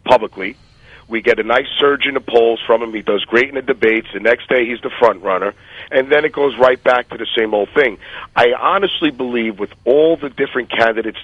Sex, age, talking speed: male, 40-59, 230 wpm